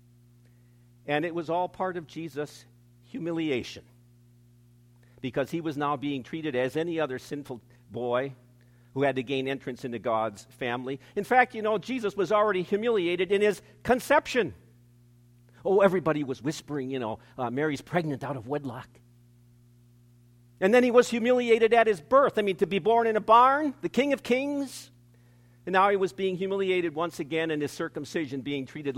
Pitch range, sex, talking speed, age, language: 120-175 Hz, male, 170 wpm, 50-69, English